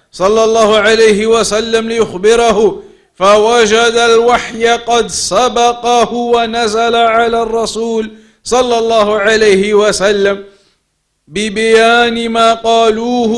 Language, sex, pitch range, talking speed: English, male, 225-255 Hz, 85 wpm